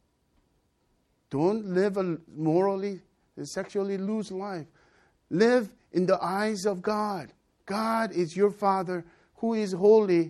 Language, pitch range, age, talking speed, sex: English, 130-190 Hz, 50-69, 120 wpm, male